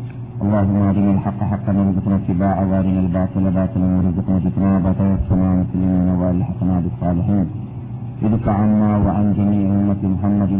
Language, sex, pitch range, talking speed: Malayalam, male, 100-130 Hz, 130 wpm